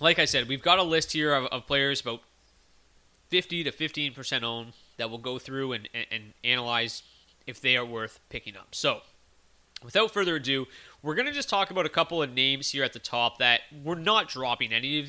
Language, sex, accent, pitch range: English, male, American, 120-155 Hz